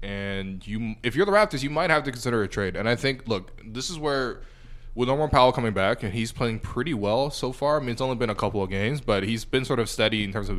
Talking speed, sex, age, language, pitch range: 285 wpm, male, 20-39, English, 105-130 Hz